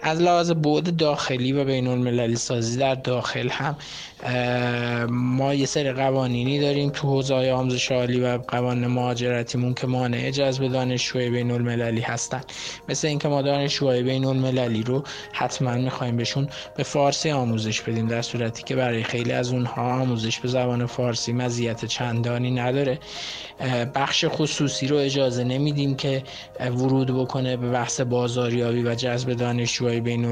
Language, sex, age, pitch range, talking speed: Persian, male, 20-39, 120-135 Hz, 145 wpm